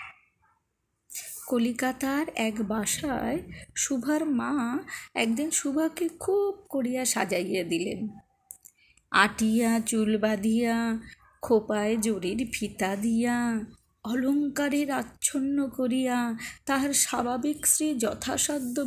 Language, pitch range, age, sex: Bengali, 225-290 Hz, 30-49, female